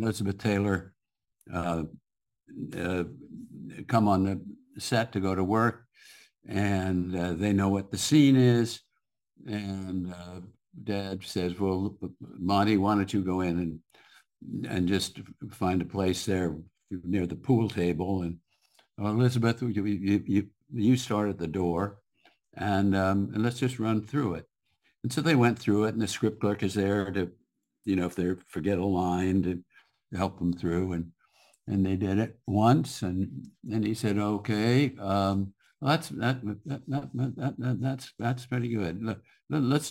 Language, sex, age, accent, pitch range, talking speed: English, male, 60-79, American, 95-120 Hz, 160 wpm